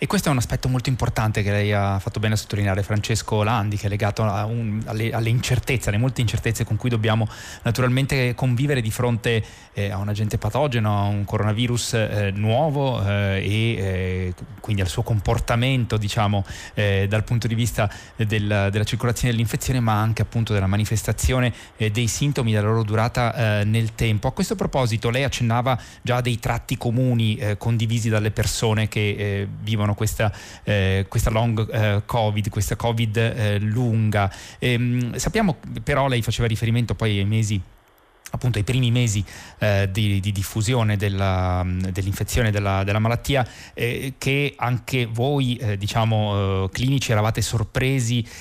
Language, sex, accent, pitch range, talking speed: Italian, male, native, 105-120 Hz, 160 wpm